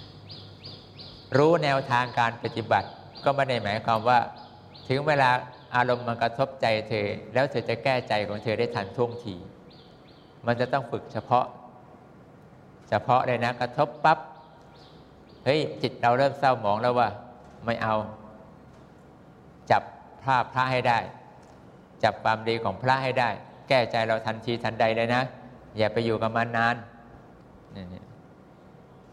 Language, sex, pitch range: English, male, 115-135 Hz